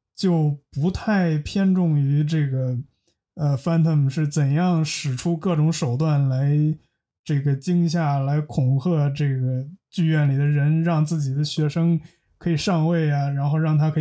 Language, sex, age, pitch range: Chinese, male, 20-39, 140-170 Hz